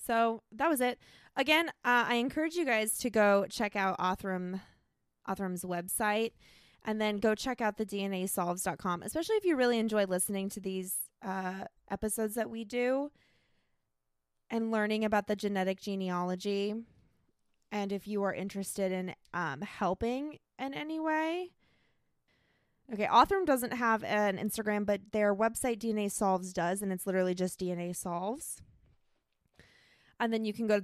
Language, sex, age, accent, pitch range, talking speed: English, female, 20-39, American, 185-230 Hz, 150 wpm